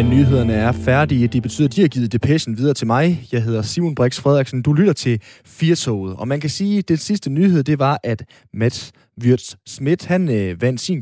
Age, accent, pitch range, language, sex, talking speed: 20-39, native, 110-145 Hz, Danish, male, 200 wpm